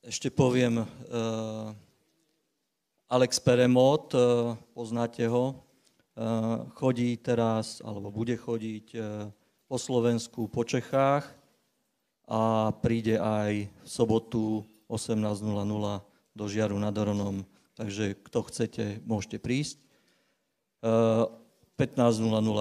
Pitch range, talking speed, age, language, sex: 105-125 Hz, 95 wpm, 40-59, Slovak, male